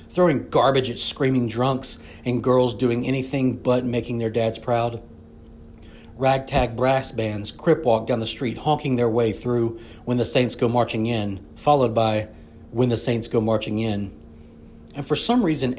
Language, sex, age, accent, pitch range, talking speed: English, male, 40-59, American, 105-125 Hz, 165 wpm